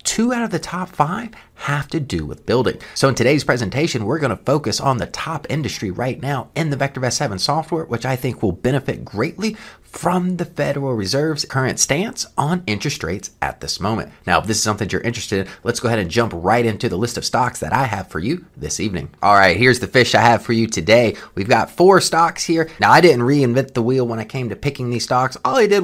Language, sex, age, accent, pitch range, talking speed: English, male, 30-49, American, 120-160 Hz, 240 wpm